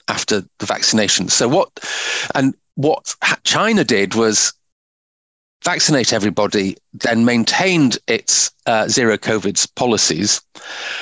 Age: 40-59